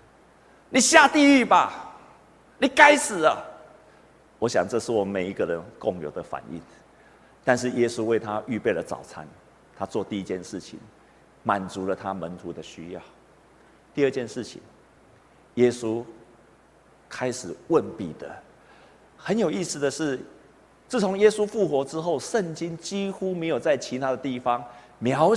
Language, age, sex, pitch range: Chinese, 50-69, male, 120-195 Hz